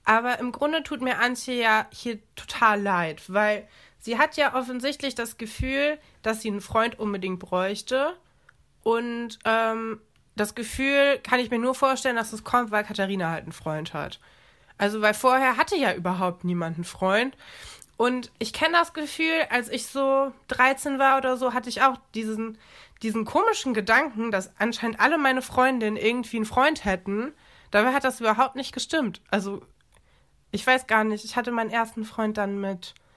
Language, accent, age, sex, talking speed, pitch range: German, German, 20-39, female, 175 wpm, 215-265 Hz